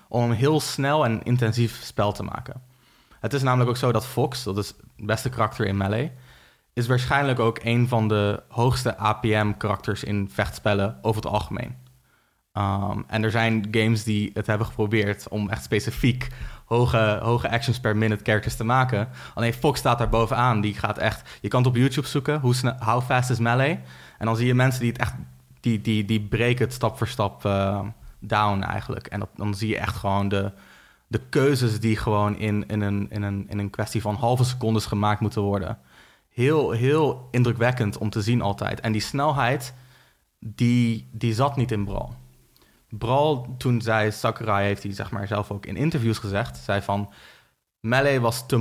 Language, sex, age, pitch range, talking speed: Dutch, male, 20-39, 105-125 Hz, 190 wpm